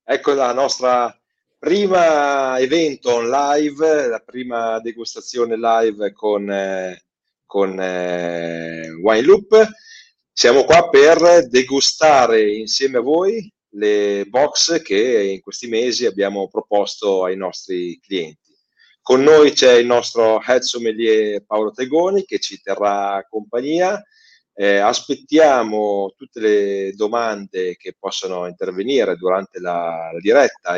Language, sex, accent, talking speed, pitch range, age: Italian, male, native, 110 wpm, 95-155 Hz, 30-49